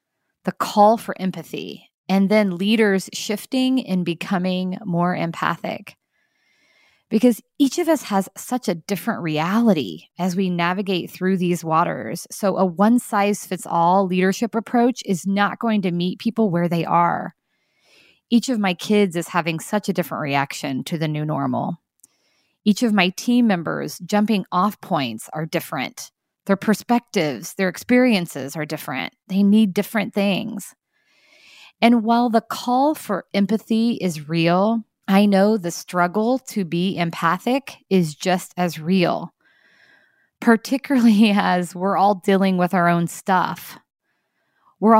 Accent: American